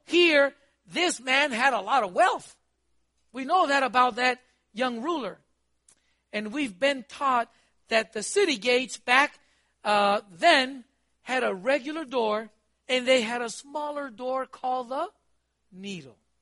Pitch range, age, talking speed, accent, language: 205-315 Hz, 60-79, 145 wpm, American, English